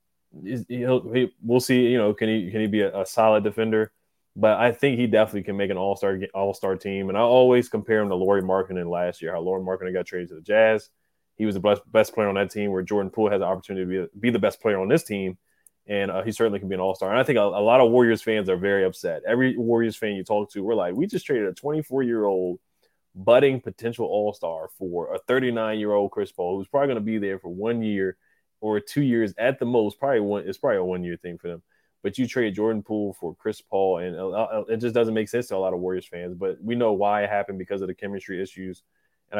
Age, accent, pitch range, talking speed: 20-39, American, 95-110 Hz, 260 wpm